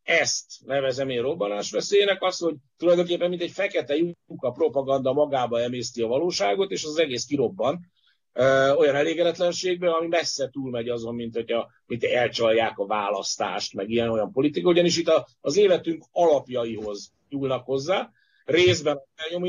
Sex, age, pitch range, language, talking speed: male, 50-69, 120-175 Hz, Hungarian, 150 wpm